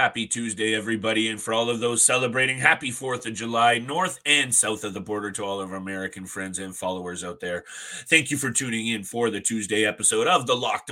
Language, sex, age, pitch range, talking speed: English, male, 30-49, 115-155 Hz, 225 wpm